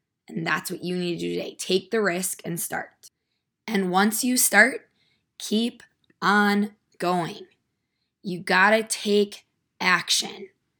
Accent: American